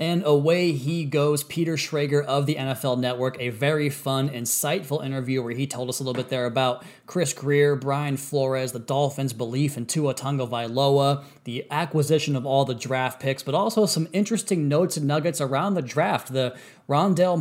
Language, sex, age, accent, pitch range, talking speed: English, male, 20-39, American, 135-160 Hz, 185 wpm